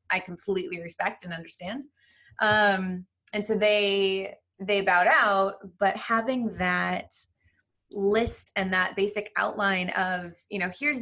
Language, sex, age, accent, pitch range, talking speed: English, female, 20-39, American, 180-205 Hz, 130 wpm